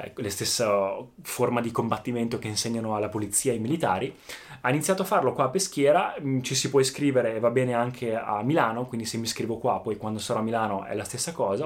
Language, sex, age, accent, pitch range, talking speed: Italian, male, 20-39, native, 110-140 Hz, 220 wpm